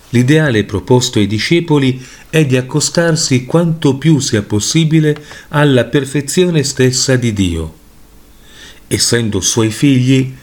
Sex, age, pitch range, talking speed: male, 40-59, 110-150 Hz, 110 wpm